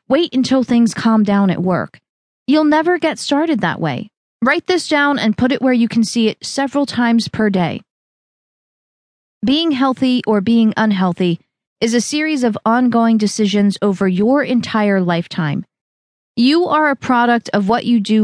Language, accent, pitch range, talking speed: English, American, 205-265 Hz, 170 wpm